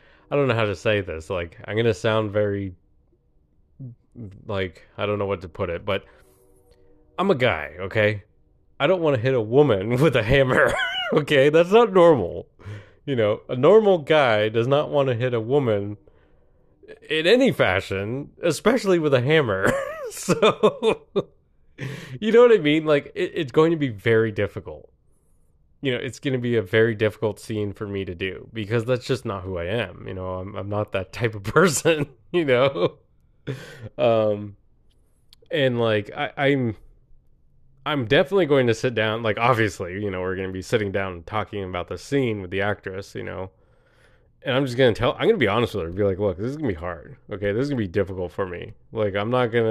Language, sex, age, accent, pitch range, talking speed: English, male, 20-39, American, 100-140 Hz, 205 wpm